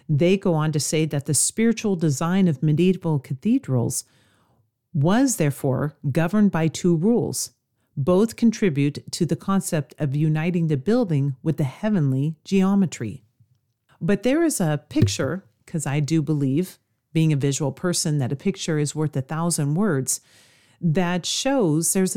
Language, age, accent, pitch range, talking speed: English, 40-59, American, 140-185 Hz, 150 wpm